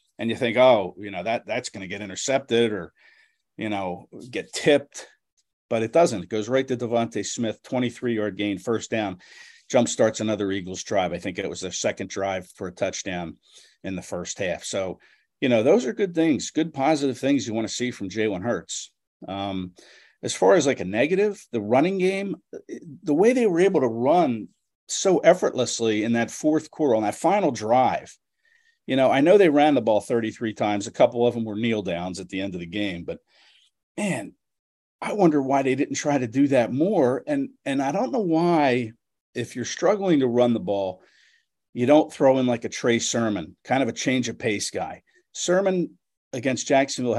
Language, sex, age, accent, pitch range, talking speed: English, male, 50-69, American, 110-150 Hz, 200 wpm